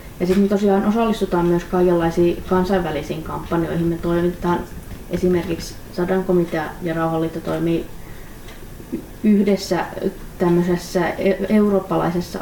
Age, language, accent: 30-49, Finnish, native